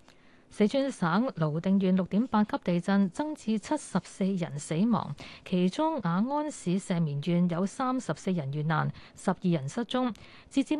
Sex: female